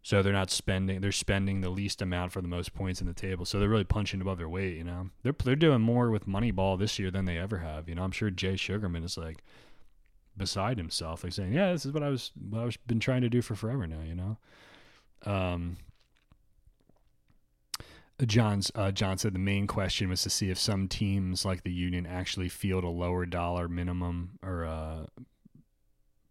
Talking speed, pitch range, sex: 210 wpm, 90-105 Hz, male